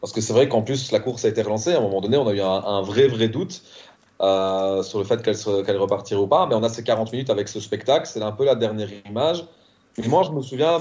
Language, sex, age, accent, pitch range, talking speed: French, male, 30-49, French, 115-145 Hz, 295 wpm